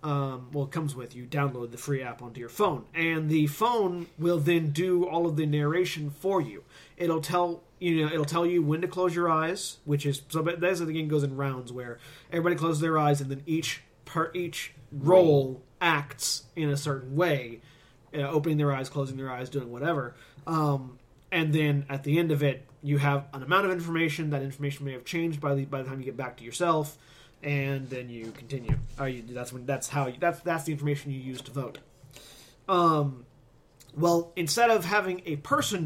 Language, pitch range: English, 135-165 Hz